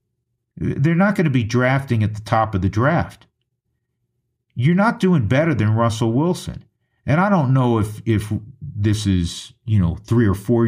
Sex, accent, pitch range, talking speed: male, American, 105-155 Hz, 180 wpm